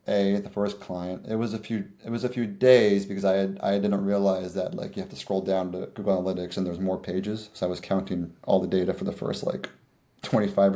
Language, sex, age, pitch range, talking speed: English, male, 30-49, 100-130 Hz, 250 wpm